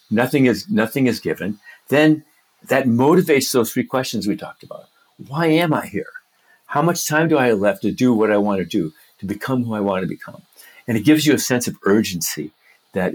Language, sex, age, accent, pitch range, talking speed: English, male, 50-69, American, 105-140 Hz, 220 wpm